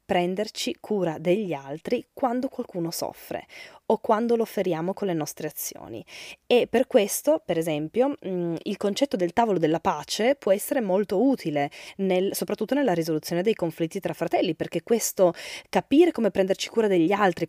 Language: Italian